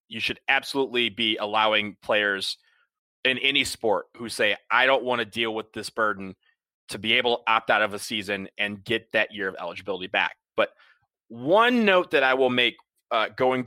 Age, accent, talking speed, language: 30-49, American, 195 wpm, English